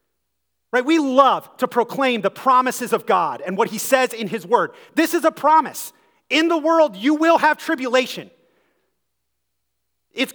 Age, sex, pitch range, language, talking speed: 30-49, male, 175-280 Hz, English, 160 wpm